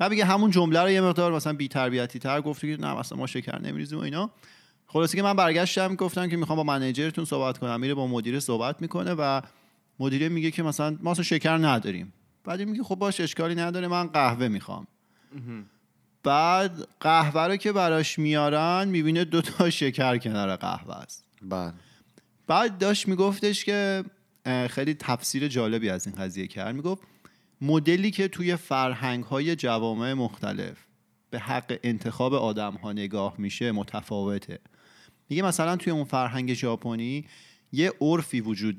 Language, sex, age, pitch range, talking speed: Persian, male, 30-49, 120-170 Hz, 150 wpm